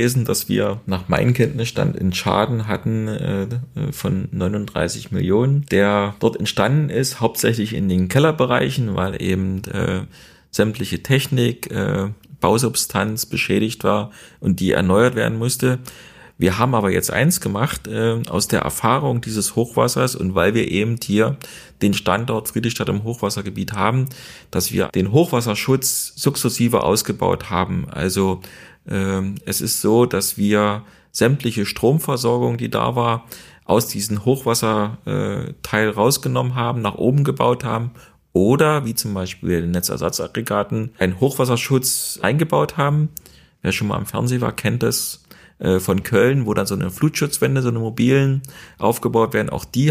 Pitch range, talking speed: 100-130 Hz, 140 wpm